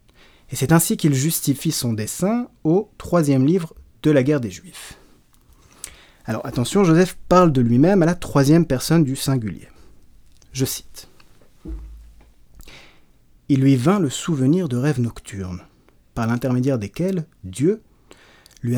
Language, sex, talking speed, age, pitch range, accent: French, male, 135 wpm, 30-49, 115-160 Hz, French